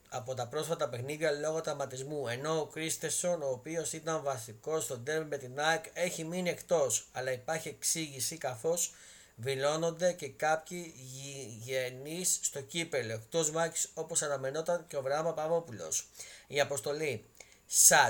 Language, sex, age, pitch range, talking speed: Greek, male, 30-49, 120-160 Hz, 140 wpm